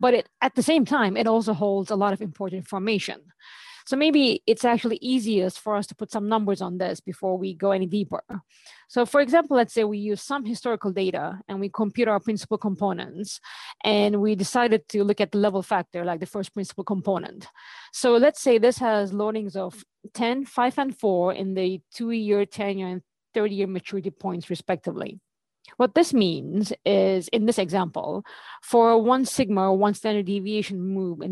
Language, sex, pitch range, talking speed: English, female, 190-235 Hz, 195 wpm